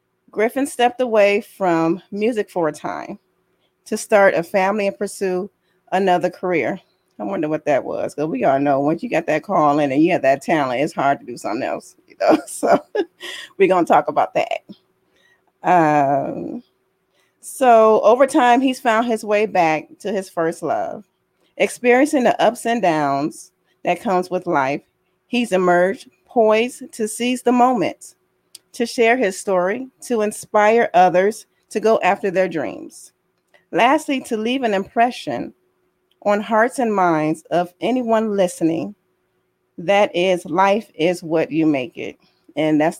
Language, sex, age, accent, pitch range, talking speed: English, female, 40-59, American, 175-240 Hz, 160 wpm